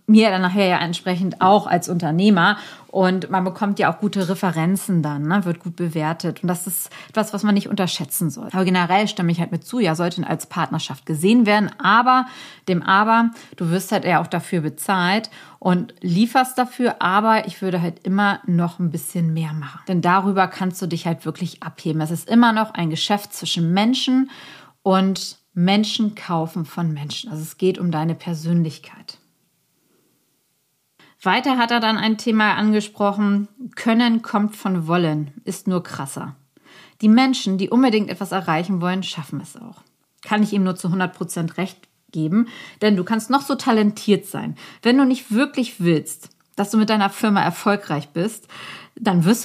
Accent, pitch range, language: German, 170-215 Hz, German